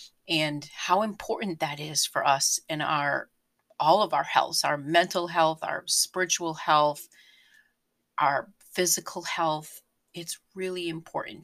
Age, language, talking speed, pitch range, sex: 40-59, English, 130 wpm, 160-190 Hz, female